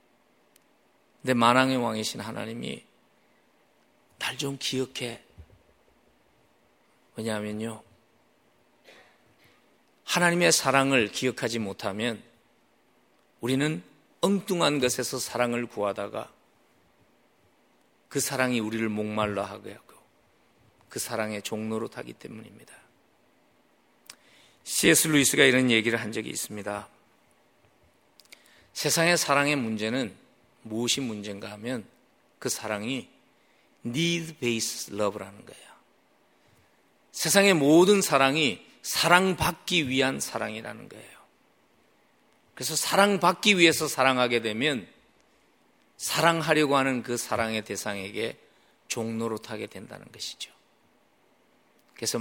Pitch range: 110-150 Hz